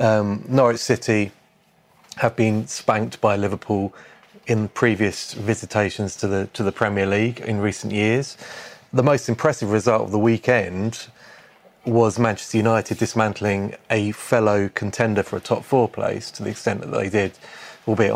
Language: English